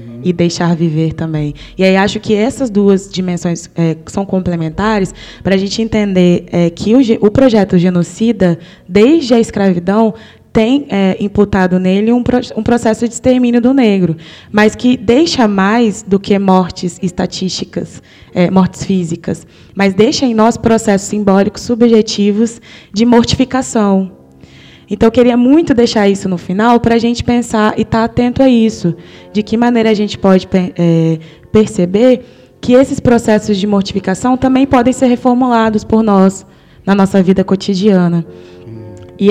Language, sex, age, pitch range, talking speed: English, female, 20-39, 180-225 Hz, 145 wpm